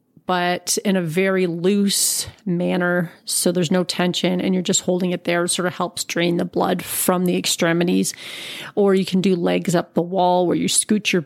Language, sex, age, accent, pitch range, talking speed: English, female, 30-49, American, 175-205 Hz, 205 wpm